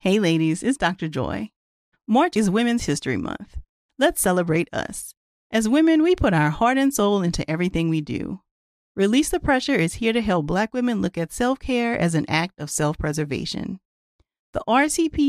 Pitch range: 160-240 Hz